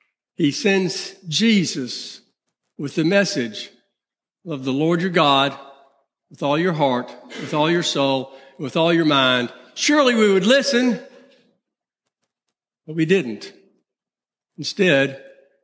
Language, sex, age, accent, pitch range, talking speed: English, male, 60-79, American, 150-230 Hz, 125 wpm